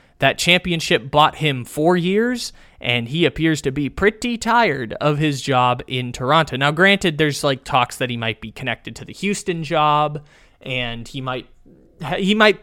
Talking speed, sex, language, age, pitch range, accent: 175 wpm, male, English, 20-39, 130-180 Hz, American